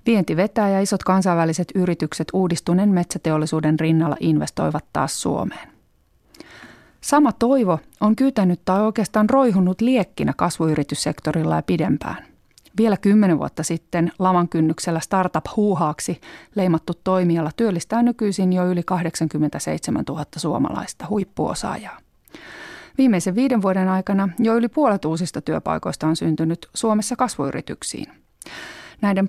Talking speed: 115 wpm